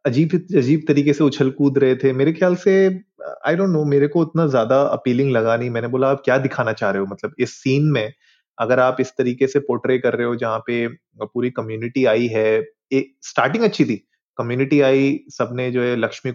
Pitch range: 120-155 Hz